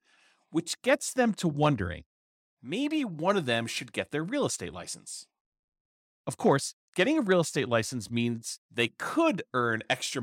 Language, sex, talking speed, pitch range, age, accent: English, male, 160 wpm, 115-170 Hz, 40-59, American